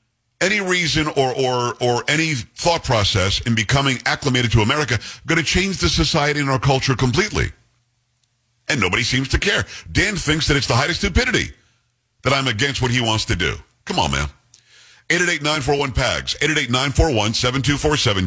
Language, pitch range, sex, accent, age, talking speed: English, 115-150 Hz, male, American, 50-69, 160 wpm